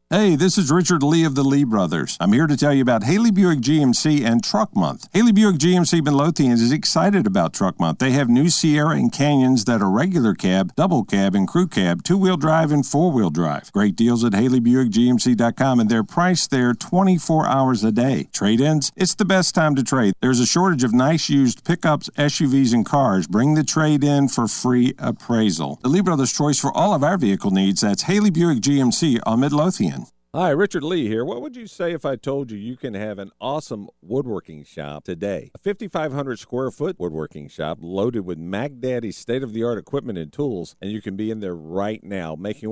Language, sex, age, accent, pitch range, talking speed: English, male, 50-69, American, 105-155 Hz, 200 wpm